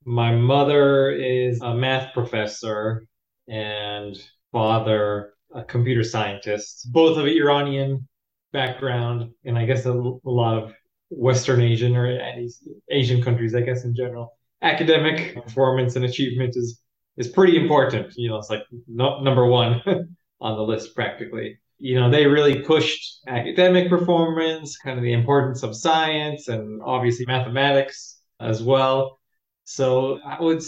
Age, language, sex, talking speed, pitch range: 20-39, English, male, 135 wpm, 110-135 Hz